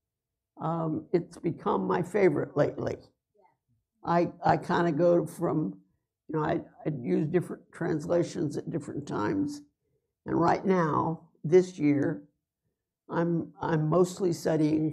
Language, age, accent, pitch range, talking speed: English, 60-79, American, 145-175 Hz, 125 wpm